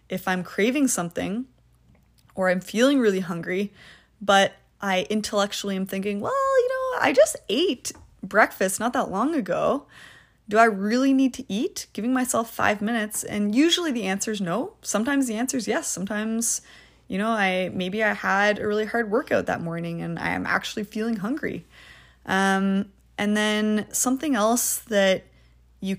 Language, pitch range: English, 185-240 Hz